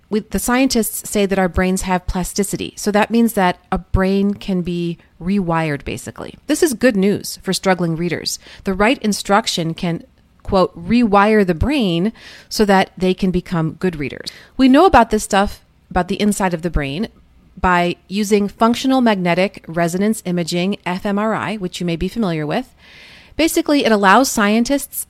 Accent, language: American, English